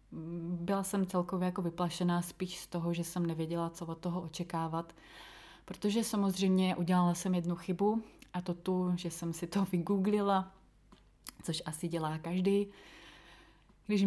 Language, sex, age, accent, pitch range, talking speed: Czech, female, 30-49, native, 160-180 Hz, 140 wpm